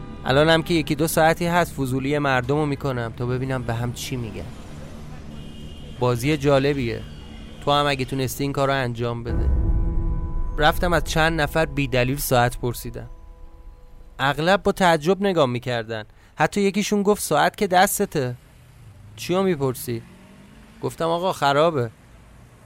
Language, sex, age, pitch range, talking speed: Persian, male, 30-49, 115-160 Hz, 125 wpm